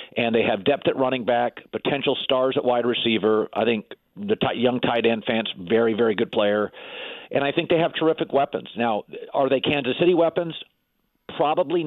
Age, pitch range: 50-69, 120-175 Hz